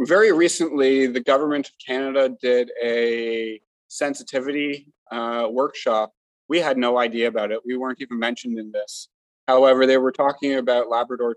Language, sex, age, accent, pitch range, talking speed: English, male, 30-49, American, 115-135 Hz, 155 wpm